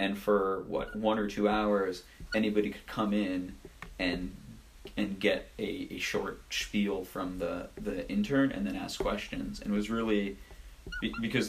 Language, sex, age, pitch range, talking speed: English, male, 30-49, 90-115 Hz, 160 wpm